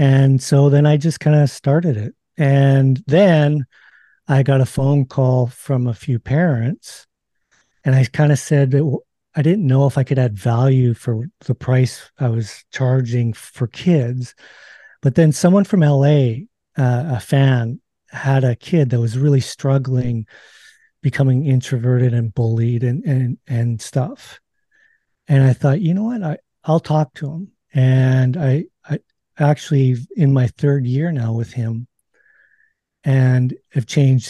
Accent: American